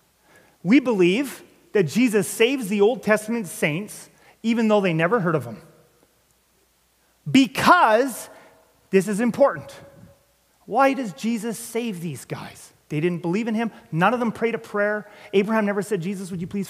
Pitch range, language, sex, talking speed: 160-210 Hz, English, male, 160 wpm